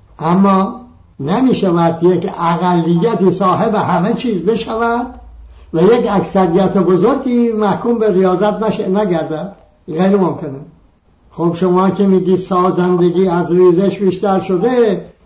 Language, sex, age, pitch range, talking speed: English, male, 60-79, 180-220 Hz, 115 wpm